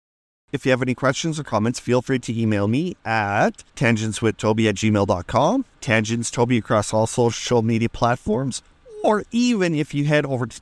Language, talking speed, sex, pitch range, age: English, 170 wpm, male, 115-145 Hz, 30-49